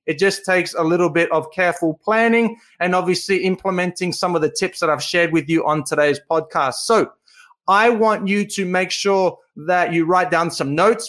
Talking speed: 200 wpm